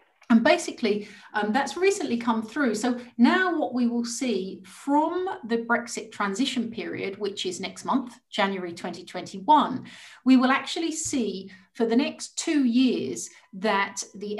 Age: 40-59